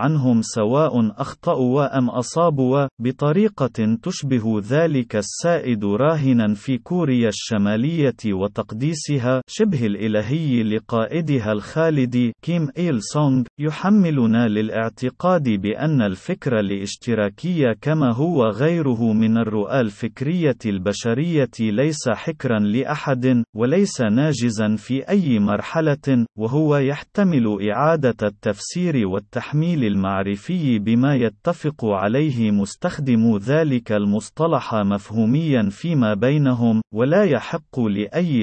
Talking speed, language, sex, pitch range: 90 wpm, Arabic, male, 110-150 Hz